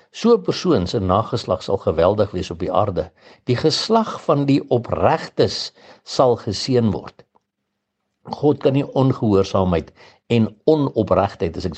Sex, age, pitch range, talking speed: male, 60-79, 95-125 Hz, 130 wpm